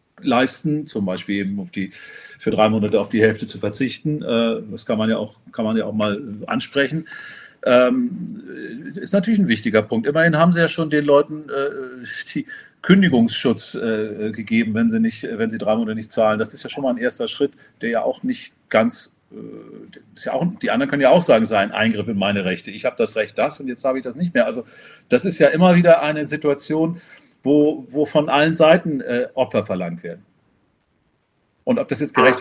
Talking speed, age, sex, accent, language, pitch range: 215 wpm, 40-59, male, German, German, 120-205 Hz